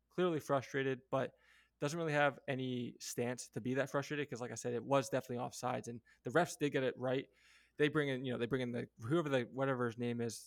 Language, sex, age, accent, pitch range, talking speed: English, male, 20-39, American, 115-135 Hz, 240 wpm